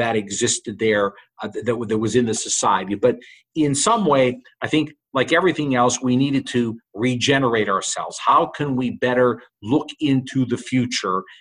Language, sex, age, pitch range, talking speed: English, male, 50-69, 120-140 Hz, 170 wpm